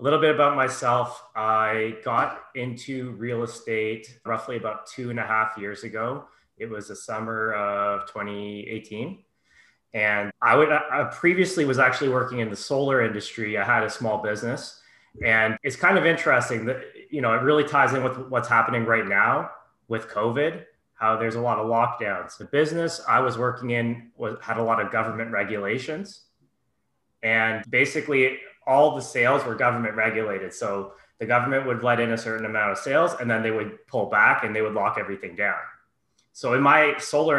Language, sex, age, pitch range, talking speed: English, male, 20-39, 110-125 Hz, 180 wpm